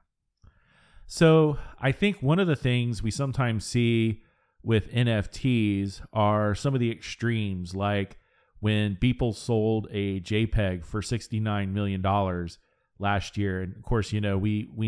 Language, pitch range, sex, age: English, 100-115 Hz, male, 40-59